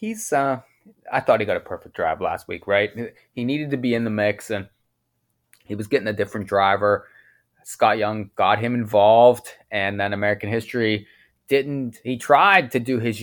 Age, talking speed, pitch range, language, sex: 20-39, 185 wpm, 110-140 Hz, English, male